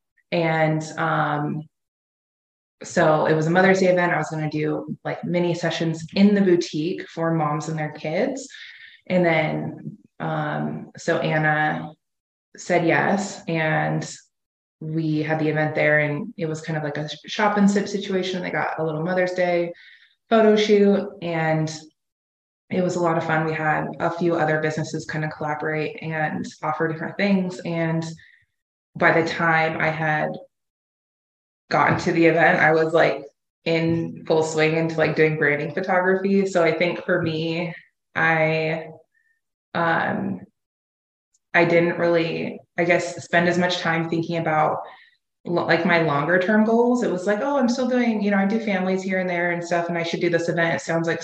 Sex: female